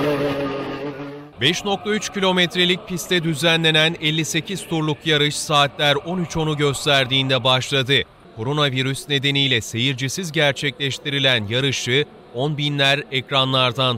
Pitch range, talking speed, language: 135-170 Hz, 80 wpm, Turkish